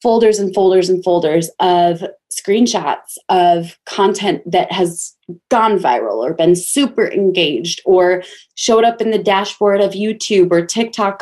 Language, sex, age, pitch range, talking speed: English, female, 20-39, 175-215 Hz, 145 wpm